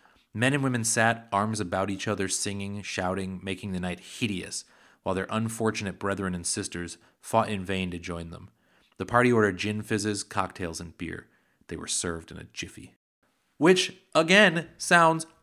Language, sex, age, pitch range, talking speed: English, male, 30-49, 95-120 Hz, 165 wpm